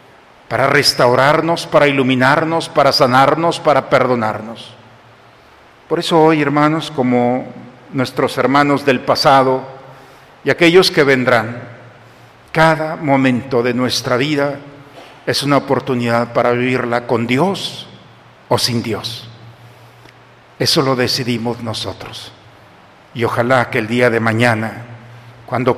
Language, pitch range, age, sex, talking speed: Spanish, 120-140 Hz, 50-69, male, 110 wpm